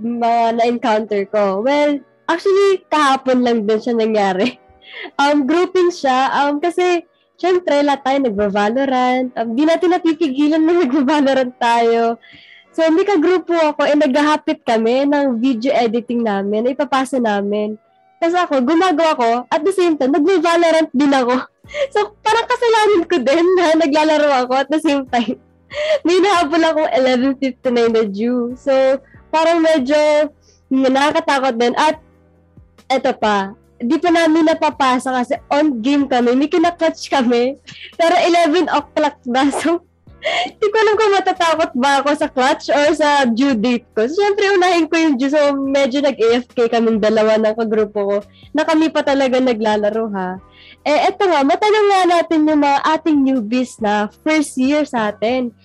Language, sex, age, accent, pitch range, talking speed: Filipino, female, 20-39, native, 240-325 Hz, 150 wpm